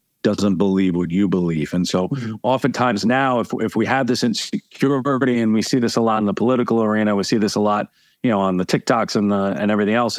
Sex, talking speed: male, 235 wpm